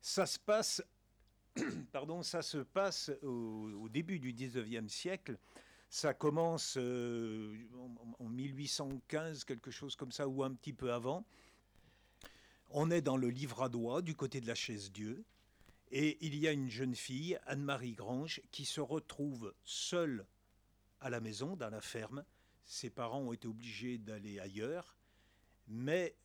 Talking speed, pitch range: 155 wpm, 105-140 Hz